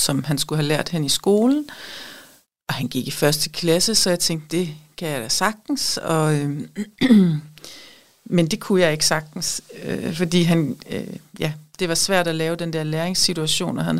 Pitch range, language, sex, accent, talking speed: 155-205 Hz, Danish, female, native, 195 wpm